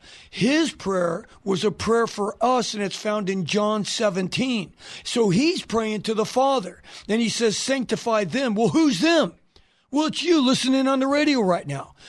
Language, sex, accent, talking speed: English, male, American, 180 wpm